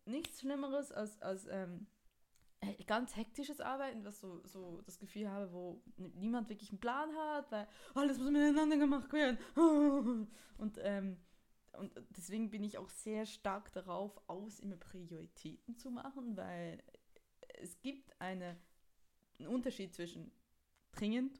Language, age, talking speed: German, 20-39, 140 wpm